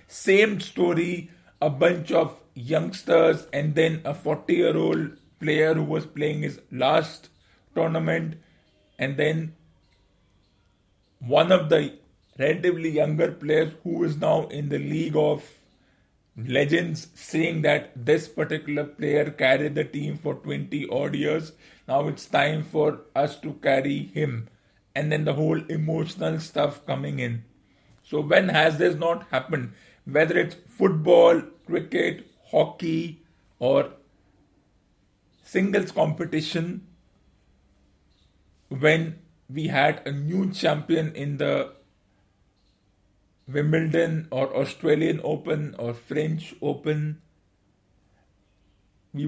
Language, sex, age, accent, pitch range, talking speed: English, male, 50-69, Indian, 125-160 Hz, 110 wpm